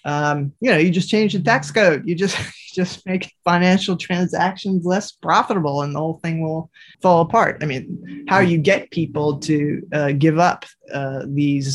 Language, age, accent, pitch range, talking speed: Swedish, 20-39, American, 140-175 Hz, 180 wpm